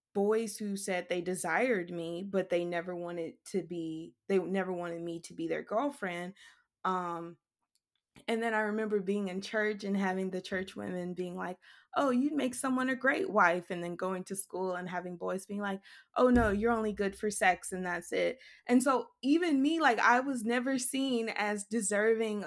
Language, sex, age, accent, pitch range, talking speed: English, female, 20-39, American, 185-240 Hz, 195 wpm